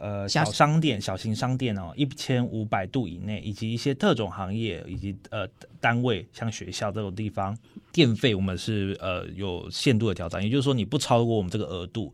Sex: male